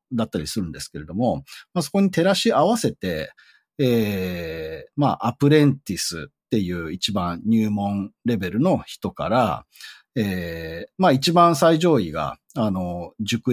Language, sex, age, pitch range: Japanese, male, 40-59, 100-165 Hz